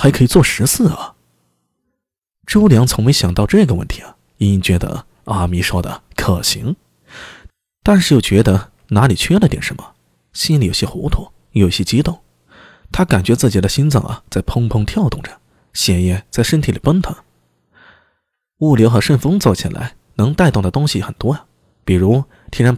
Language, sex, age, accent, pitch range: Chinese, male, 20-39, native, 95-145 Hz